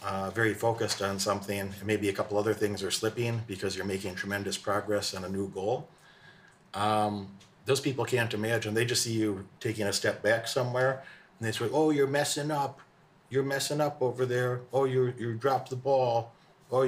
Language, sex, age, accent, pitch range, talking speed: English, male, 50-69, American, 105-125 Hz, 195 wpm